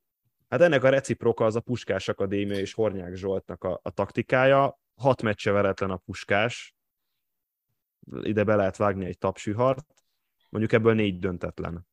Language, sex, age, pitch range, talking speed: Hungarian, male, 10-29, 95-120 Hz, 145 wpm